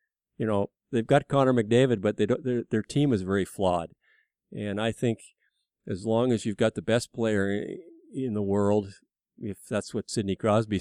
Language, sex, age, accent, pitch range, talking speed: English, male, 50-69, American, 105-125 Hz, 185 wpm